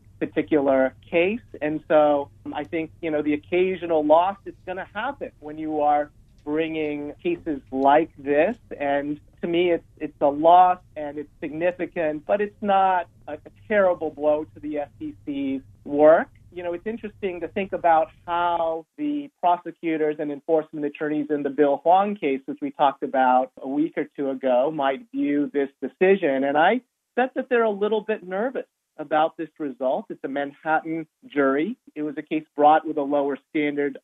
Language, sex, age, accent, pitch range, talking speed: English, male, 40-59, American, 145-170 Hz, 175 wpm